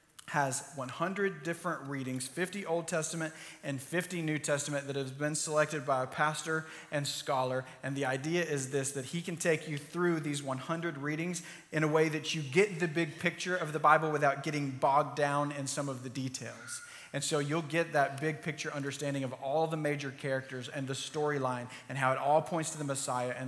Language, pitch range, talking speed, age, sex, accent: English, 135-160 Hz, 205 wpm, 30-49, male, American